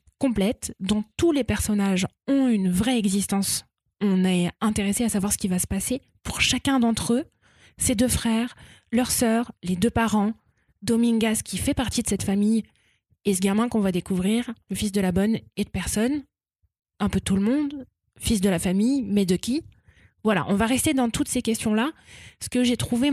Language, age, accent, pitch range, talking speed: French, 20-39, French, 200-250 Hz, 195 wpm